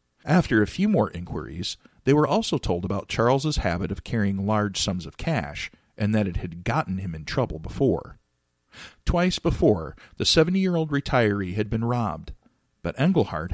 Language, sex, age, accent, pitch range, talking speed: English, male, 40-59, American, 95-125 Hz, 165 wpm